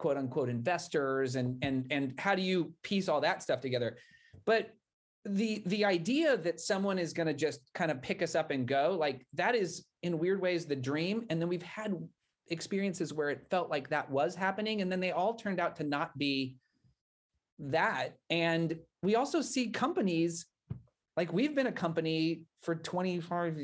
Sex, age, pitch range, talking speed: male, 30-49, 145-185 Hz, 185 wpm